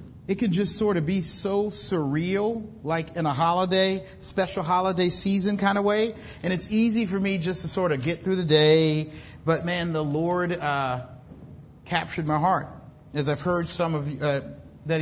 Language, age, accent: English, 40-59, American